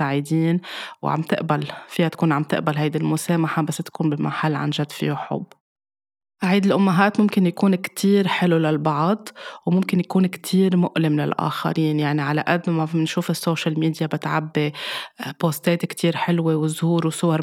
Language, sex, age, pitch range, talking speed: Arabic, female, 20-39, 155-180 Hz, 140 wpm